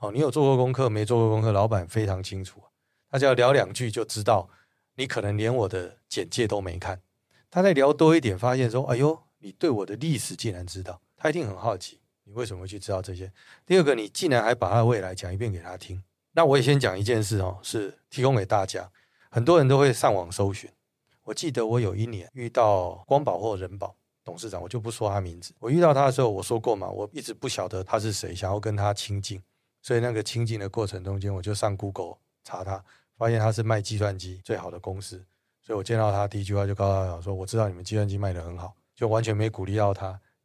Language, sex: Chinese, male